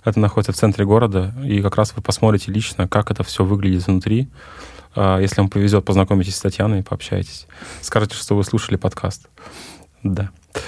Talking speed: 165 wpm